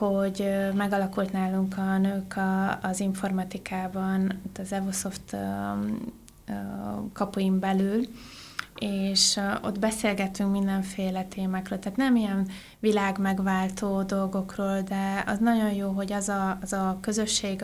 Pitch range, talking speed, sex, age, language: 190-200 Hz, 110 wpm, female, 20-39, Hungarian